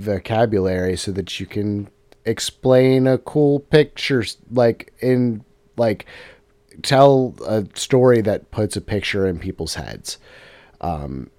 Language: English